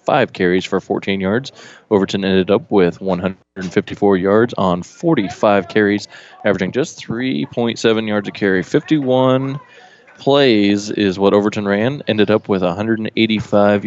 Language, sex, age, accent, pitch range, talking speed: English, male, 20-39, American, 95-105 Hz, 125 wpm